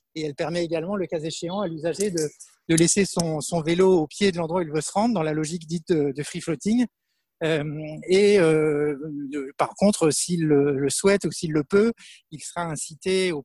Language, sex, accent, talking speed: French, male, French, 220 wpm